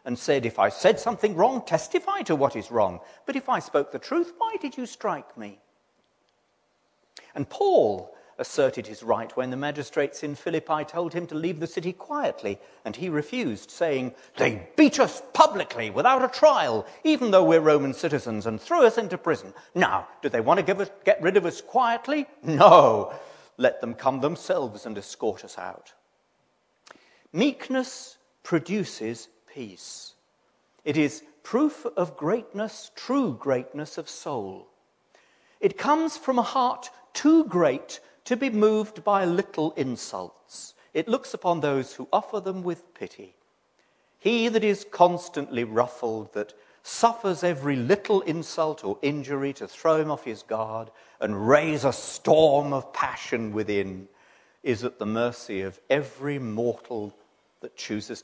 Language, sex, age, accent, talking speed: English, male, 40-59, British, 150 wpm